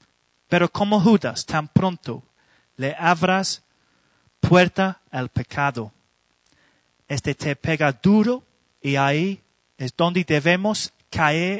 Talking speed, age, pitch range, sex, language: 105 wpm, 30-49, 115-175 Hz, male, Spanish